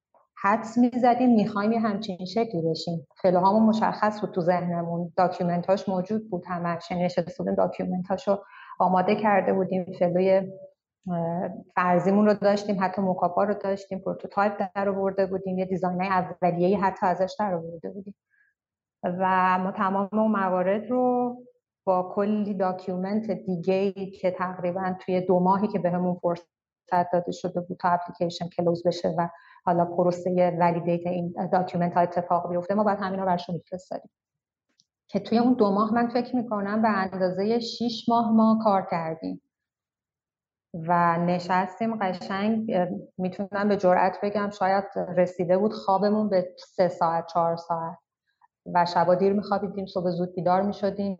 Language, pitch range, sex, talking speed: Persian, 175-200 Hz, female, 145 wpm